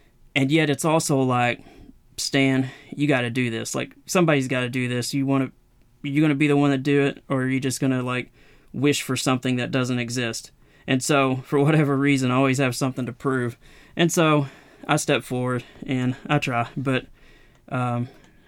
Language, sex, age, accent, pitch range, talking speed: English, male, 30-49, American, 130-150 Hz, 205 wpm